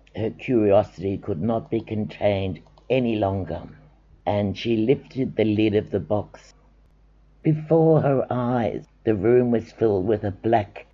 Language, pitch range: English, 100-125 Hz